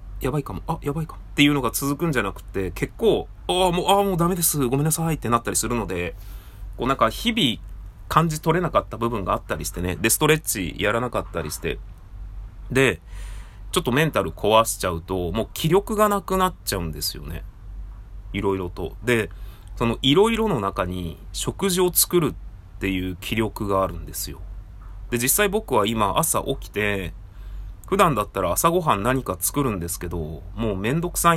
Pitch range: 95-140 Hz